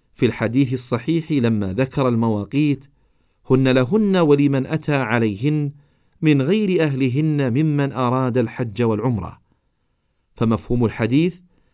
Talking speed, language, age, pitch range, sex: 100 wpm, Arabic, 50-69, 120-160 Hz, male